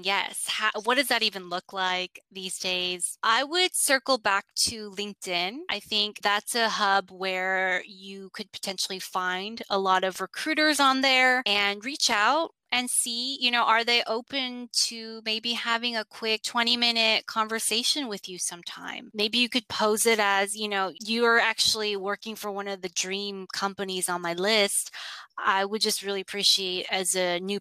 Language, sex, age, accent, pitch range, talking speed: English, female, 20-39, American, 185-235 Hz, 170 wpm